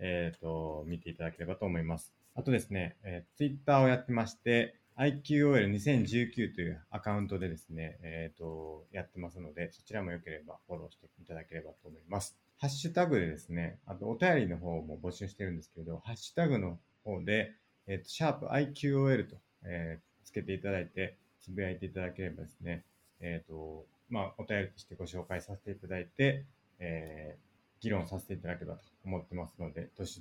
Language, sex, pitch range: Japanese, male, 85-115 Hz